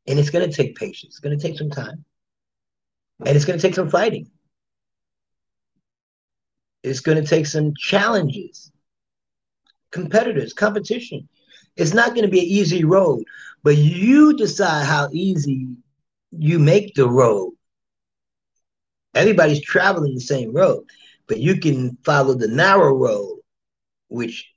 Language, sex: English, male